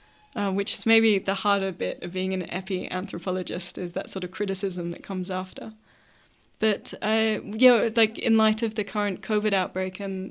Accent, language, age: British, English, 20-39